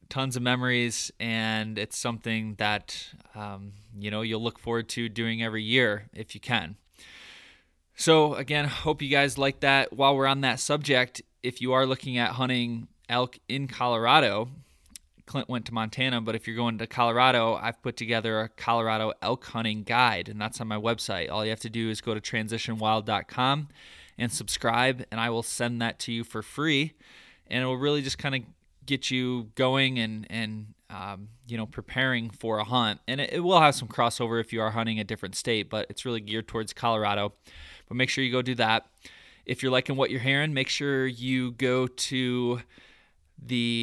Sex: male